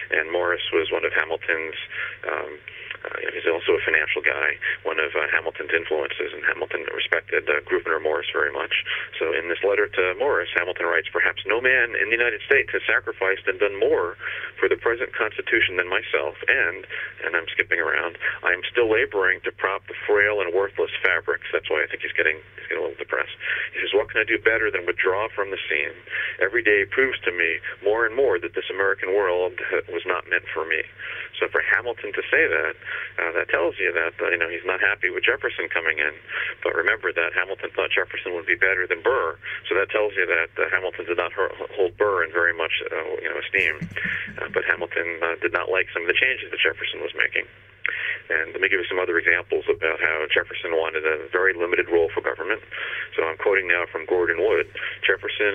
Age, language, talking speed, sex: 40-59, English, 215 wpm, male